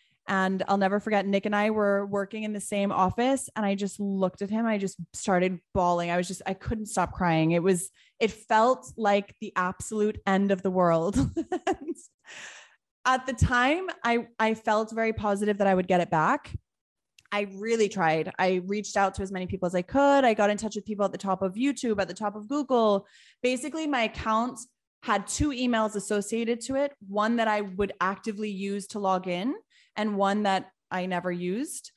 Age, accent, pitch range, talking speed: 20-39, American, 190-225 Hz, 205 wpm